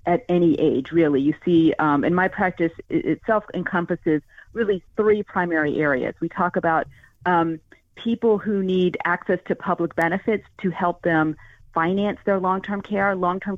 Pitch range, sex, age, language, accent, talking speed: 165-195 Hz, female, 40-59, English, American, 155 wpm